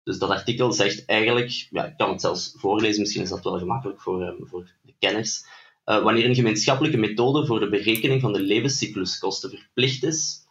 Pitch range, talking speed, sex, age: 105-135 Hz, 185 wpm, male, 20-39